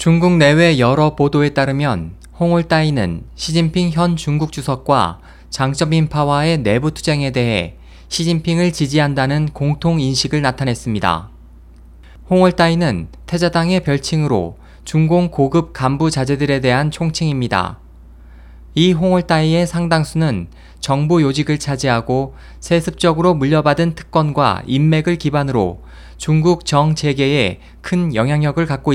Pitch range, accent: 120-170 Hz, native